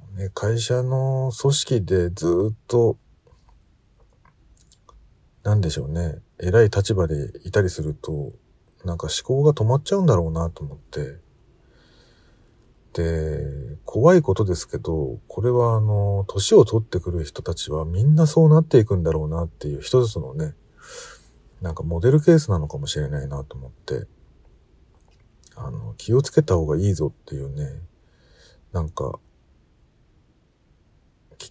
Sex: male